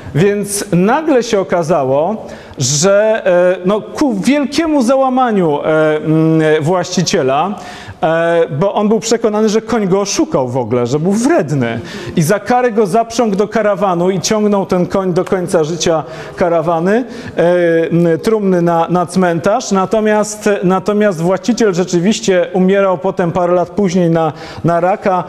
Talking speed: 130 wpm